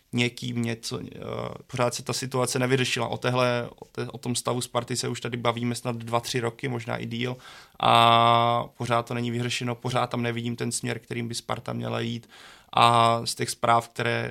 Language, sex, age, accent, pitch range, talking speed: Czech, male, 20-39, native, 115-120 Hz, 195 wpm